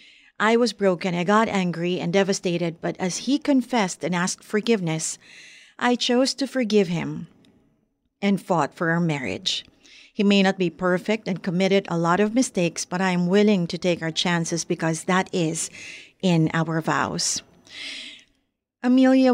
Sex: female